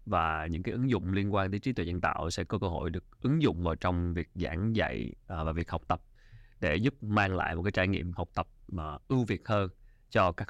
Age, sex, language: 20-39, male, Vietnamese